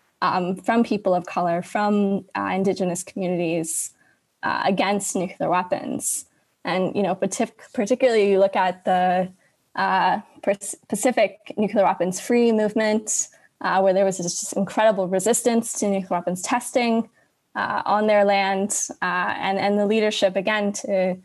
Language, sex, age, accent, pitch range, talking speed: English, female, 20-39, American, 185-215 Hz, 145 wpm